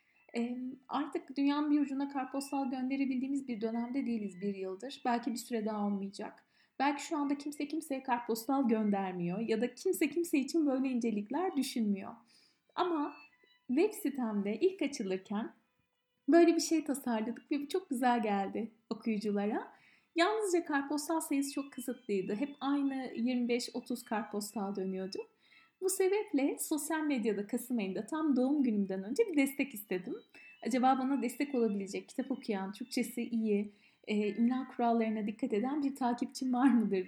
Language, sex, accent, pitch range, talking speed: Turkish, female, native, 225-285 Hz, 140 wpm